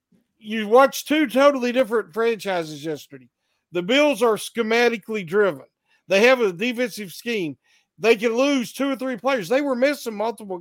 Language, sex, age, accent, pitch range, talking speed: English, male, 50-69, American, 195-255 Hz, 160 wpm